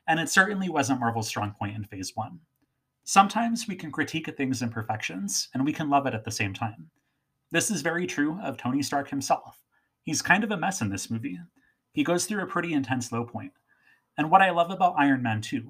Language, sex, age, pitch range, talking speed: English, male, 30-49, 120-165 Hz, 220 wpm